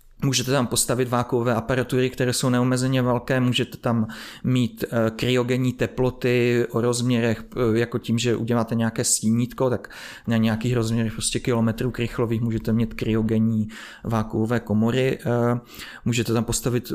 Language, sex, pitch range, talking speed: Czech, male, 115-140 Hz, 130 wpm